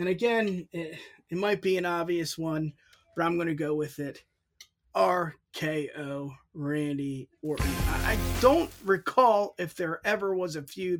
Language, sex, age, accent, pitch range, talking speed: English, male, 20-39, American, 140-170 Hz, 160 wpm